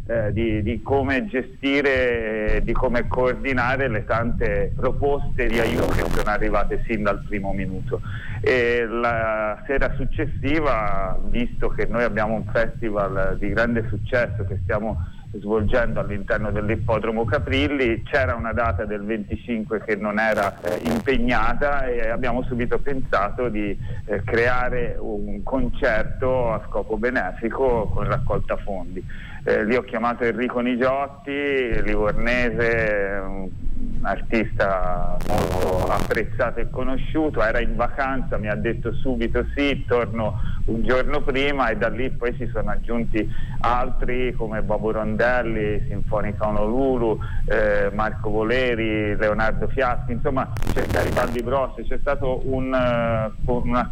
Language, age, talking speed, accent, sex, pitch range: Italian, 40-59, 125 wpm, native, male, 105-125 Hz